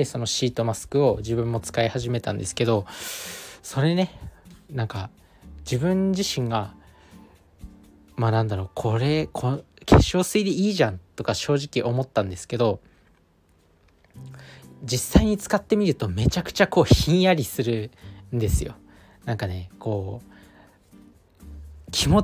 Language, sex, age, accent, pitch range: Japanese, male, 20-39, native, 100-140 Hz